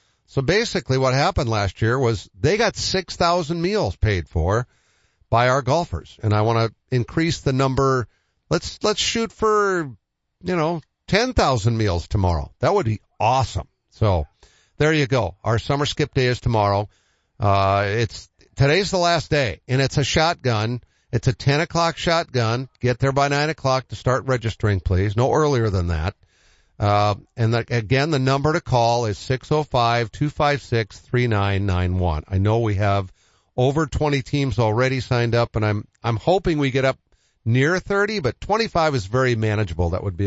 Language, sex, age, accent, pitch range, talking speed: English, male, 50-69, American, 105-145 Hz, 165 wpm